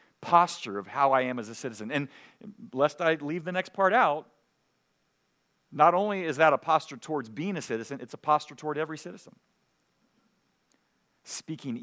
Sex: male